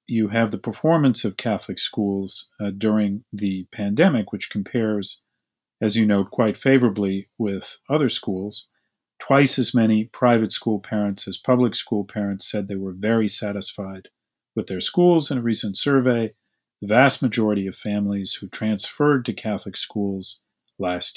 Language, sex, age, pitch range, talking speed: English, male, 40-59, 100-125 Hz, 155 wpm